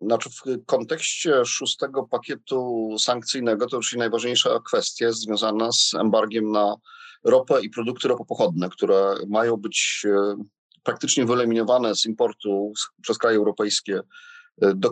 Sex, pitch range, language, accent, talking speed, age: male, 115-150 Hz, Polish, native, 115 wpm, 40-59